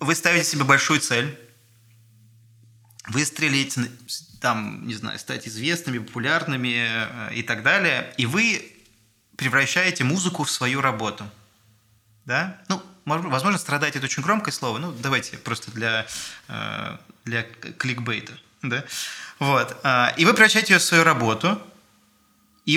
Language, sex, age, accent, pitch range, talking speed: Russian, male, 20-39, native, 115-145 Hz, 125 wpm